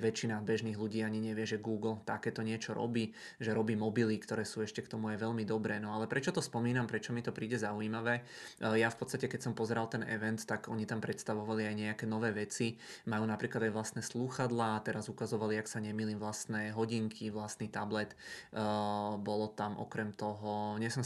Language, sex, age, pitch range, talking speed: Czech, male, 20-39, 110-120 Hz, 190 wpm